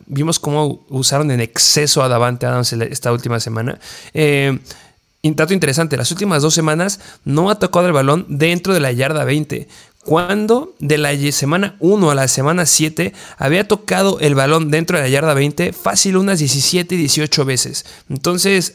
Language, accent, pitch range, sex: Spanish, Mexican, 135-170 Hz, male